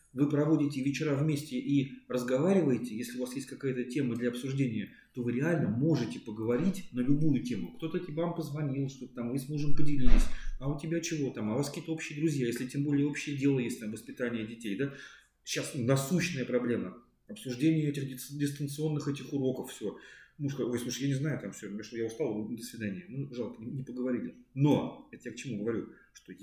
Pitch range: 125-155 Hz